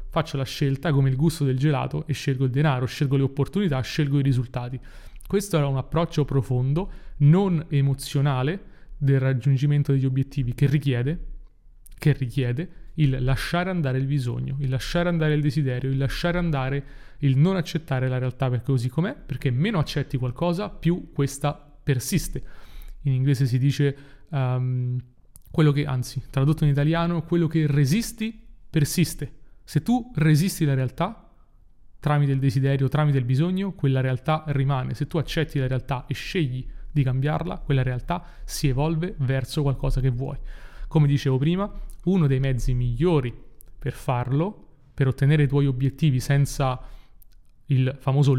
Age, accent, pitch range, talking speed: 30-49, native, 130-160 Hz, 155 wpm